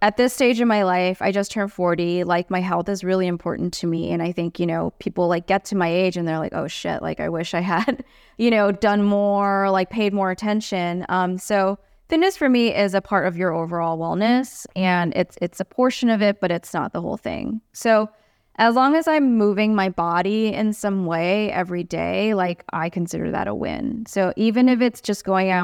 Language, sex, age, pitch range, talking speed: English, female, 20-39, 180-225 Hz, 230 wpm